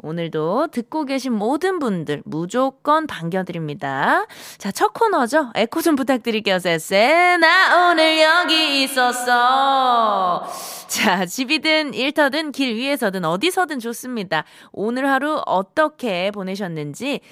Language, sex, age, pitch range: Korean, female, 20-39, 190-310 Hz